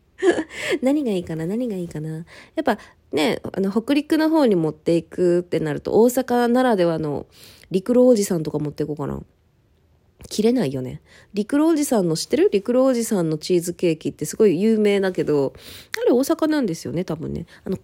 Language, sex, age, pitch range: Japanese, female, 20-39, 175-295 Hz